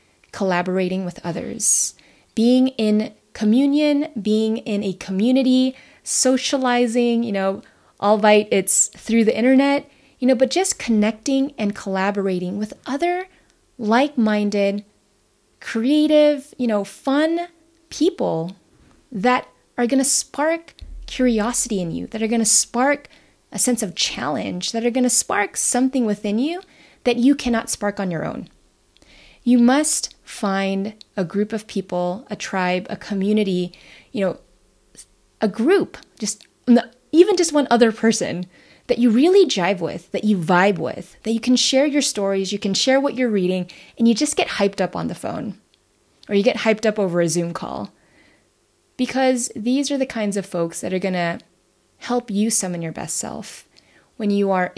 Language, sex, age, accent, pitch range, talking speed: English, female, 20-39, American, 195-255 Hz, 160 wpm